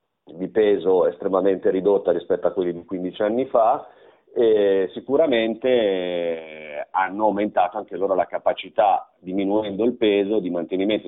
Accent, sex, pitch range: native, male, 100-140 Hz